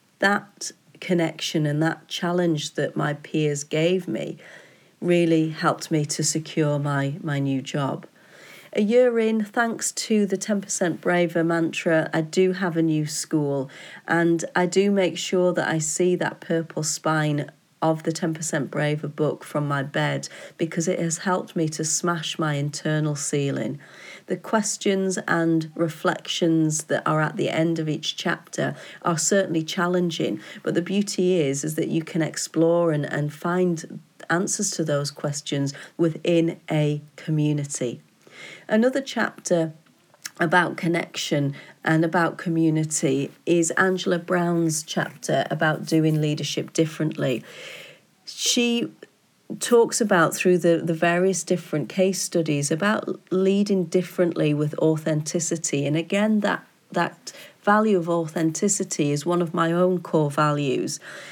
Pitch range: 155-180 Hz